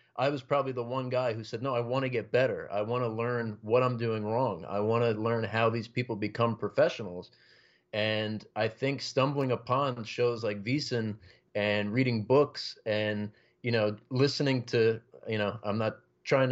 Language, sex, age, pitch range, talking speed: English, male, 30-49, 110-130 Hz, 190 wpm